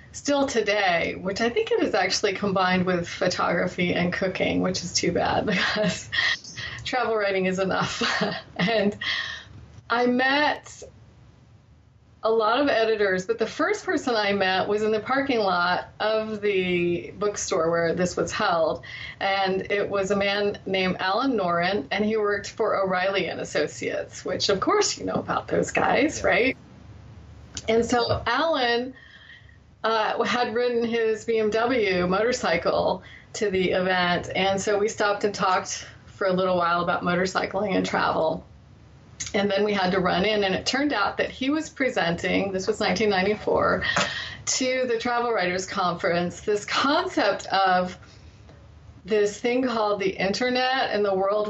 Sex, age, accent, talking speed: female, 30-49, American, 155 wpm